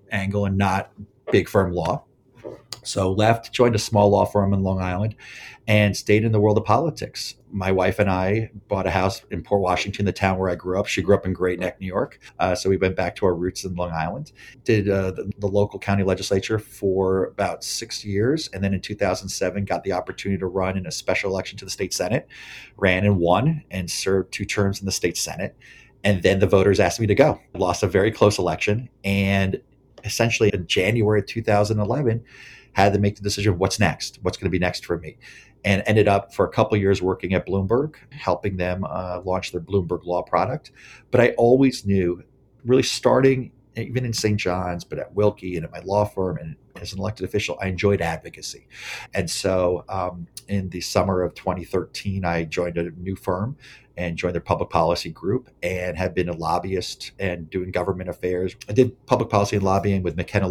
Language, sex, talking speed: English, male, 210 wpm